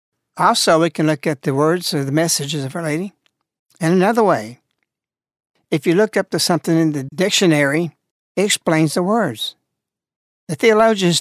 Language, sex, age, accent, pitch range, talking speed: English, male, 60-79, American, 165-210 Hz, 165 wpm